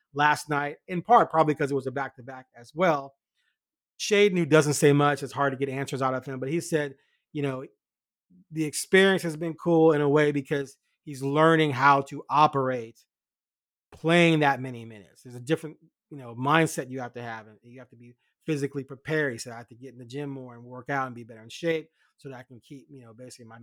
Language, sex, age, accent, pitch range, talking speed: English, male, 30-49, American, 130-160 Hz, 235 wpm